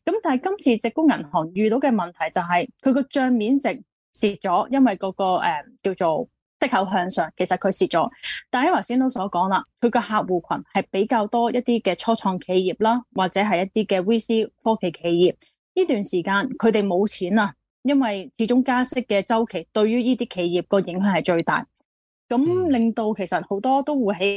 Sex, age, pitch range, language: female, 20-39, 185-245 Hz, Chinese